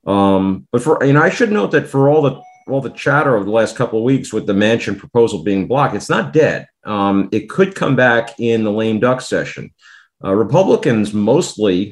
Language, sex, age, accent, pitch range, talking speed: English, male, 50-69, American, 95-120 Hz, 215 wpm